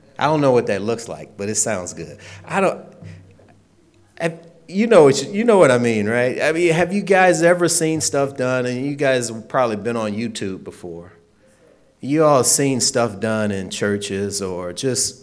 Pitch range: 100-135 Hz